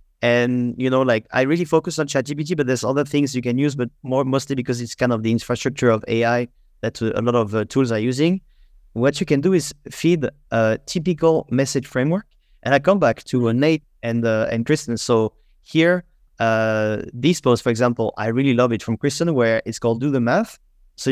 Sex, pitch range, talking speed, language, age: male, 115-150 Hz, 215 wpm, English, 30-49